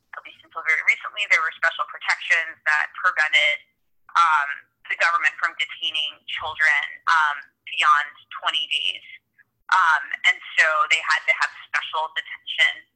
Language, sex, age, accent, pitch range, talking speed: English, female, 20-39, American, 155-200 Hz, 140 wpm